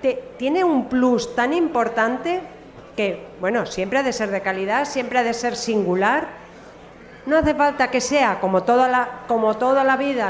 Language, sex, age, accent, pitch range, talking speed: Spanish, female, 40-59, Spanish, 215-285 Hz, 180 wpm